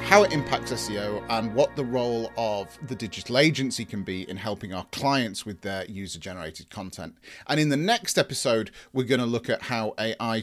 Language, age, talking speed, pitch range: English, 30-49, 190 wpm, 105-140 Hz